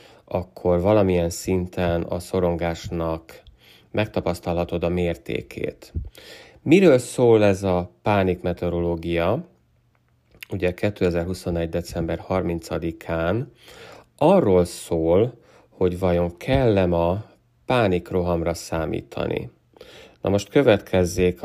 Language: Hungarian